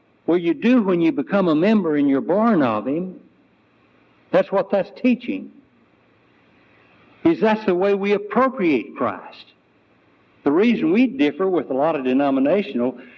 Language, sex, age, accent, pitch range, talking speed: English, male, 60-79, American, 165-240 Hz, 150 wpm